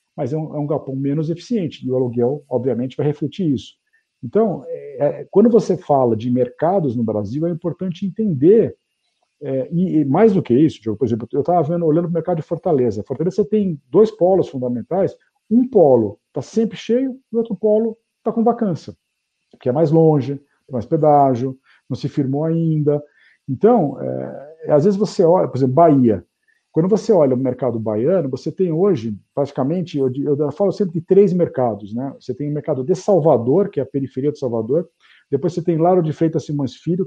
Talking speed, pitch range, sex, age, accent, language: 185 wpm, 130-190 Hz, male, 50-69, Brazilian, Portuguese